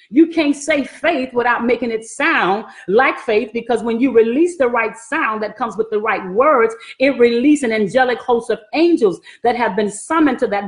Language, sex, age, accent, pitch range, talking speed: English, female, 40-59, American, 230-310 Hz, 200 wpm